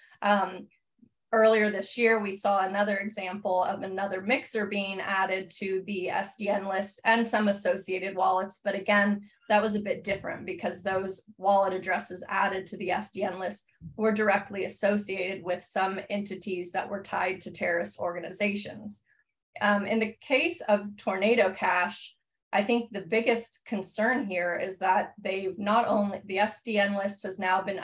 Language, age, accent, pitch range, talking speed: English, 20-39, American, 190-215 Hz, 155 wpm